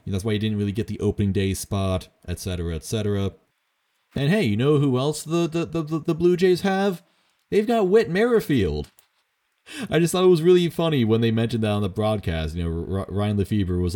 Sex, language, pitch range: male, English, 85-130 Hz